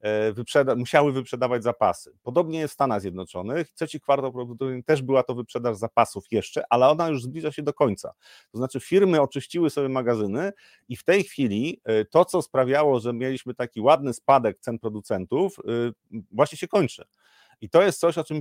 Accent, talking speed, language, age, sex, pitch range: native, 175 wpm, Polish, 30-49, male, 115-145 Hz